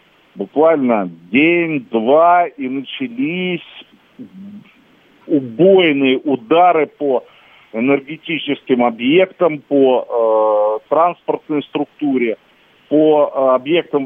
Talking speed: 65 wpm